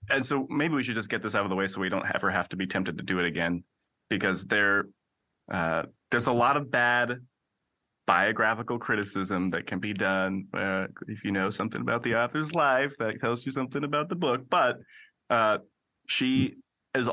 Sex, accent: male, American